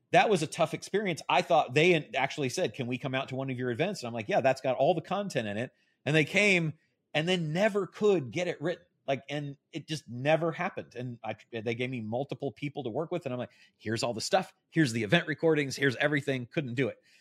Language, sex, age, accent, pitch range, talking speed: English, male, 30-49, American, 115-155 Hz, 250 wpm